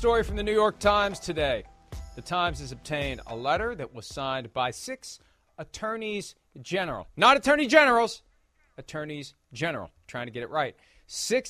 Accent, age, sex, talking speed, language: American, 40-59, male, 160 wpm, English